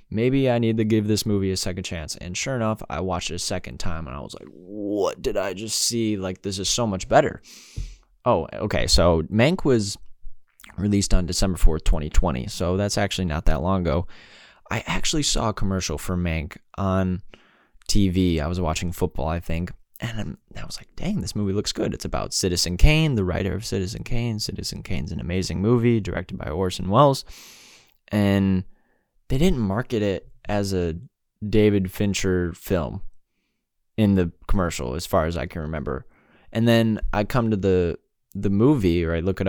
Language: English